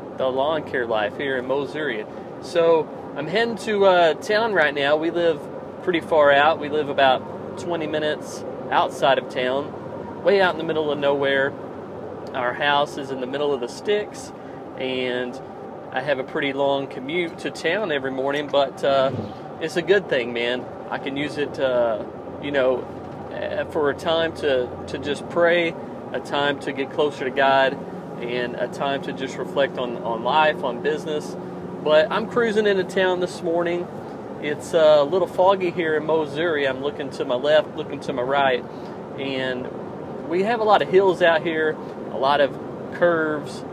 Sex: male